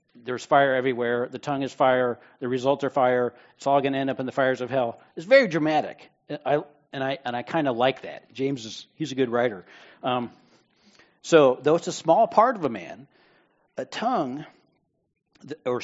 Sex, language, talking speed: male, English, 205 wpm